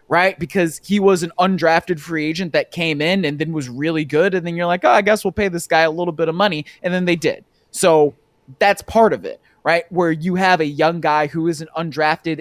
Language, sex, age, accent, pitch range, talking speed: English, male, 20-39, American, 150-195 Hz, 250 wpm